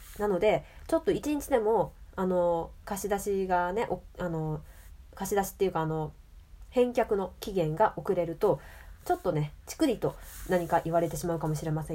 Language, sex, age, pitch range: Japanese, female, 20-39, 170-280 Hz